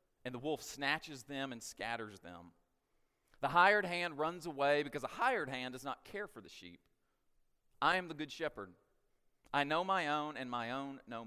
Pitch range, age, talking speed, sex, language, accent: 105-150 Hz, 40-59, 190 wpm, male, English, American